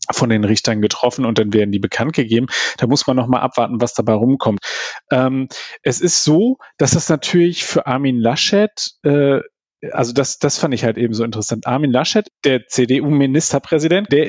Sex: male